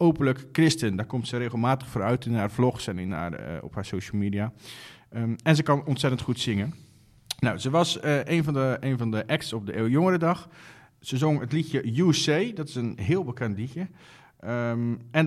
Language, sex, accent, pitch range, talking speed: Dutch, male, Dutch, 120-165 Hz, 205 wpm